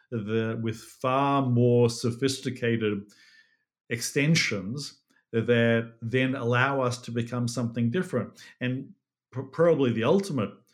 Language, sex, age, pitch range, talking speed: English, male, 50-69, 115-130 Hz, 100 wpm